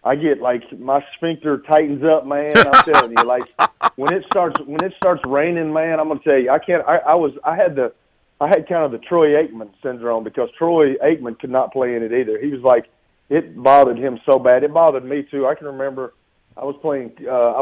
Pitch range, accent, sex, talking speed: 125-160 Hz, American, male, 230 wpm